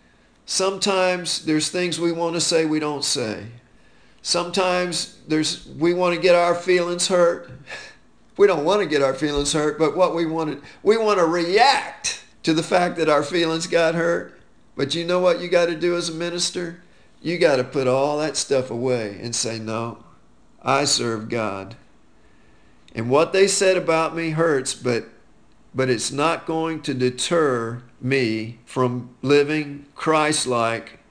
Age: 50-69